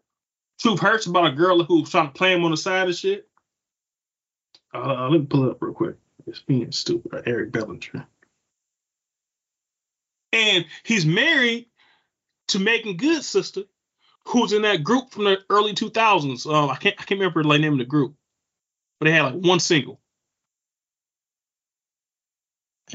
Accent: American